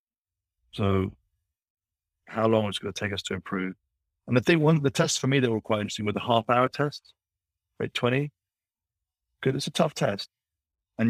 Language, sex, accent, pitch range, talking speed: English, male, British, 90-110 Hz, 195 wpm